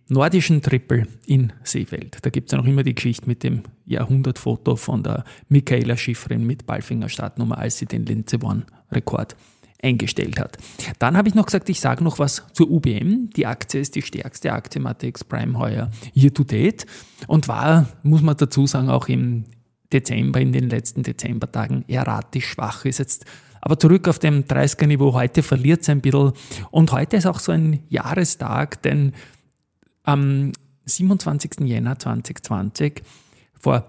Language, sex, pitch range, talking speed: German, male, 115-145 Hz, 160 wpm